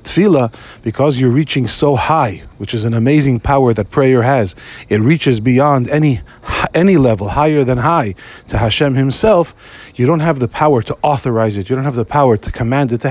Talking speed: 195 wpm